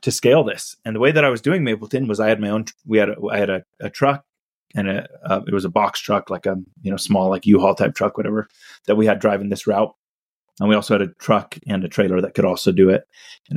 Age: 30-49